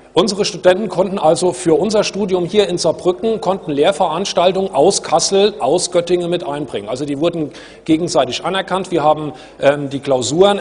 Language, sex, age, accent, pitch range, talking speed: German, male, 40-59, German, 155-190 Hz, 155 wpm